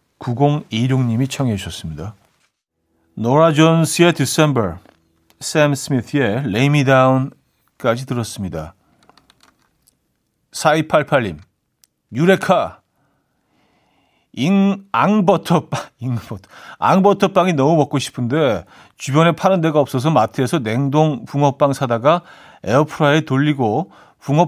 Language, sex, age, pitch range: Korean, male, 40-59, 105-155 Hz